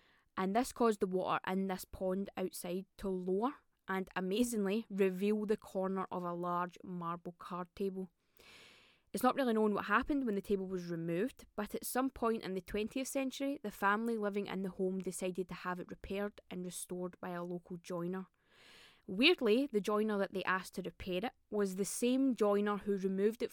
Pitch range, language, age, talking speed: 190-220 Hz, English, 20-39, 190 wpm